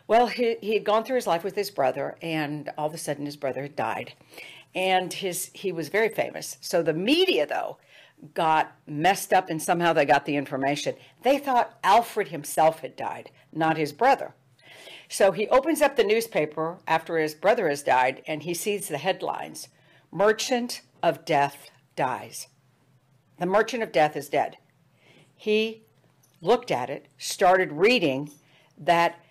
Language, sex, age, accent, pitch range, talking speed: English, female, 60-79, American, 150-200 Hz, 165 wpm